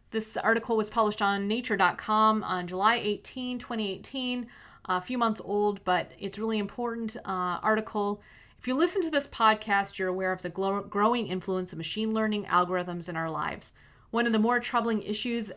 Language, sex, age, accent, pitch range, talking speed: English, female, 30-49, American, 195-235 Hz, 175 wpm